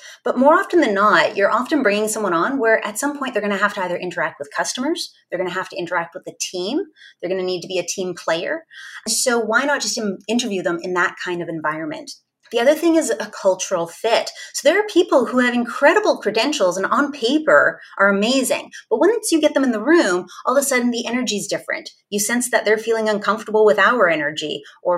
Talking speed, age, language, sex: 235 wpm, 30-49, English, female